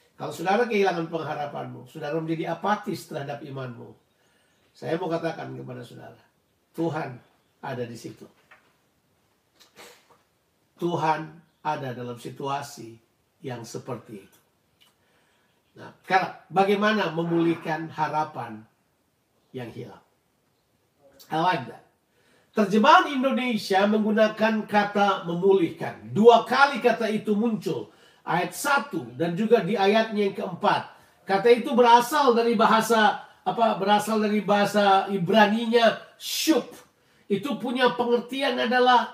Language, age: Indonesian, 50-69